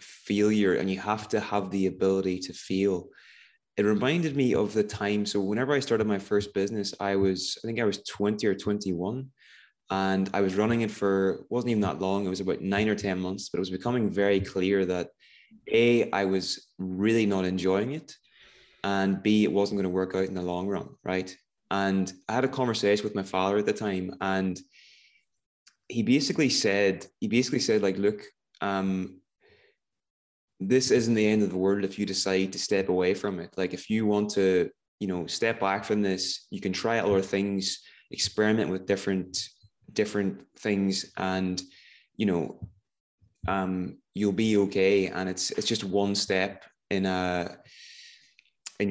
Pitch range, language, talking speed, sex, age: 95-105 Hz, English, 185 wpm, male, 20-39